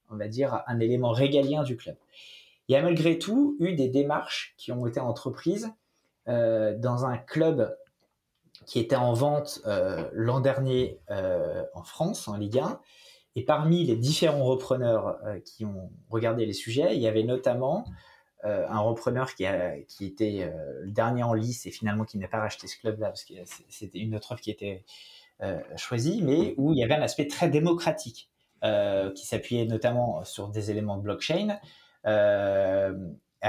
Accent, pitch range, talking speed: French, 110-150 Hz, 180 wpm